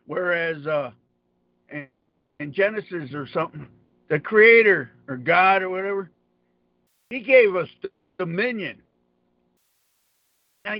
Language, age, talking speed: English, 60-79, 95 wpm